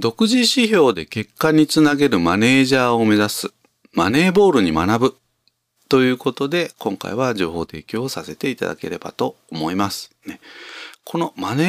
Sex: male